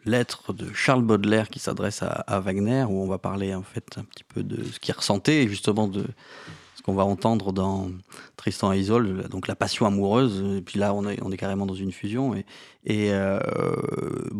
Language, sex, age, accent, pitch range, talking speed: French, male, 30-49, French, 100-125 Hz, 215 wpm